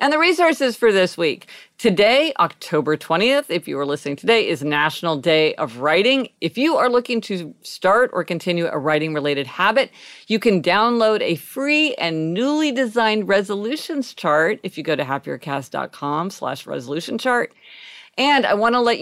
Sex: female